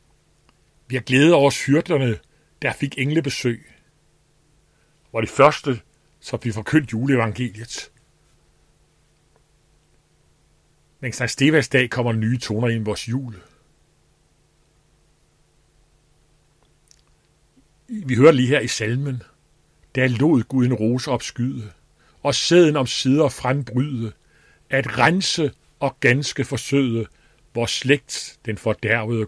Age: 60-79